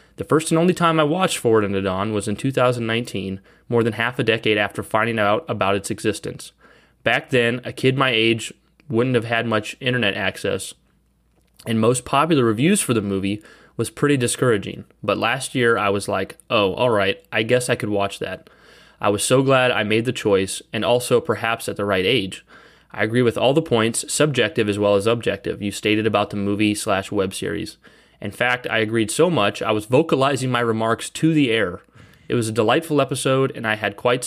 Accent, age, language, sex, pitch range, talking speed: American, 30-49, English, male, 105-125 Hz, 205 wpm